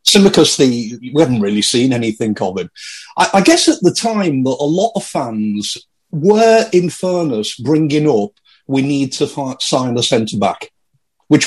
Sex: male